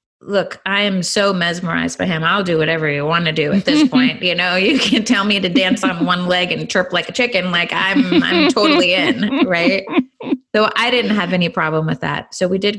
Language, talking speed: English, 235 wpm